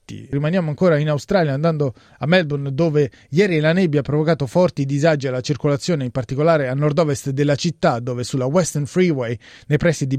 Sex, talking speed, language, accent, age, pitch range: male, 185 wpm, Italian, native, 30-49, 130-160 Hz